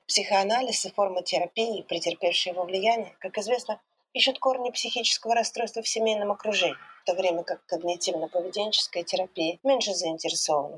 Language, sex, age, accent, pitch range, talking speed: Ukrainian, female, 30-49, native, 175-225 Hz, 135 wpm